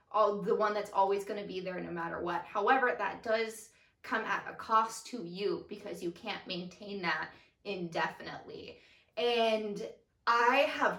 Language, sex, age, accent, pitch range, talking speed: English, female, 20-39, American, 190-245 Hz, 165 wpm